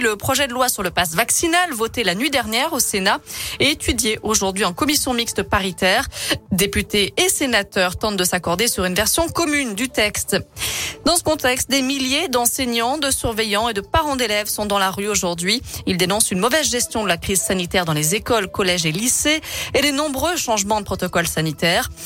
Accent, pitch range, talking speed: French, 195-270 Hz, 195 wpm